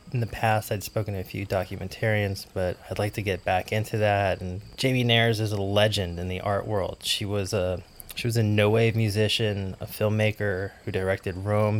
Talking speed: 210 wpm